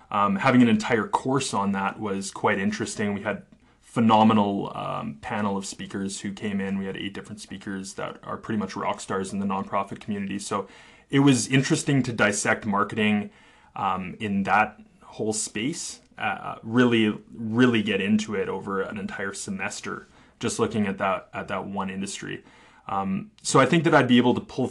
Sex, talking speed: male, 180 wpm